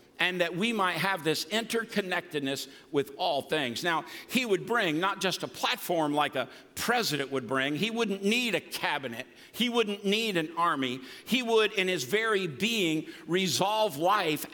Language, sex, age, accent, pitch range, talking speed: English, male, 60-79, American, 165-215 Hz, 170 wpm